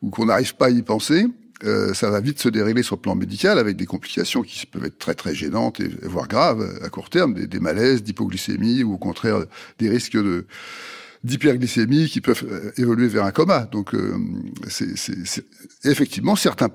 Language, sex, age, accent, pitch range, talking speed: French, male, 60-79, French, 115-150 Hz, 200 wpm